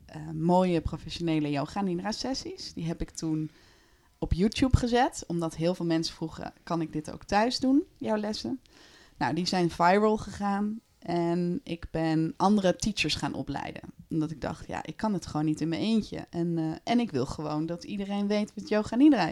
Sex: female